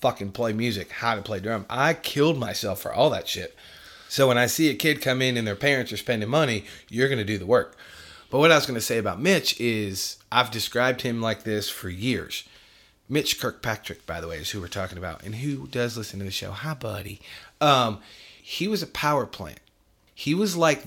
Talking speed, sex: 225 wpm, male